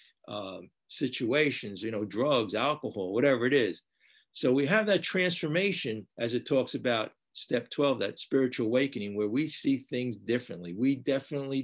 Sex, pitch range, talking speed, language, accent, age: male, 120-160 Hz, 155 wpm, English, American, 50-69